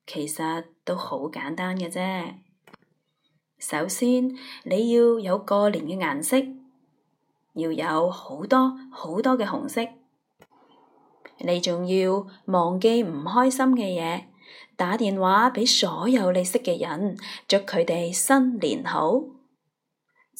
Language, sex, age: Chinese, female, 20-39